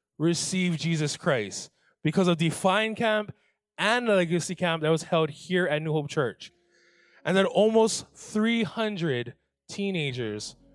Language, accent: English, American